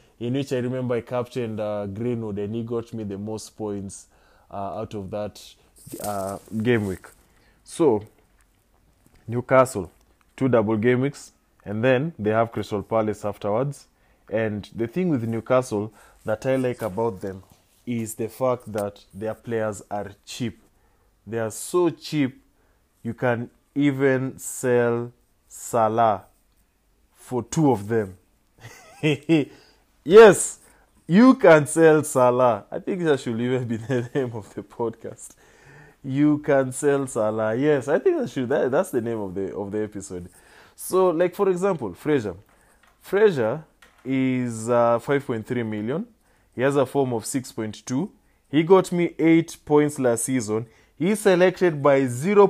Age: 20-39